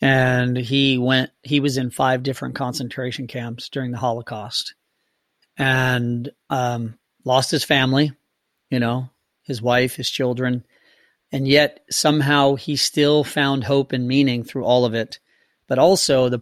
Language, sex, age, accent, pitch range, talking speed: English, male, 40-59, American, 125-155 Hz, 145 wpm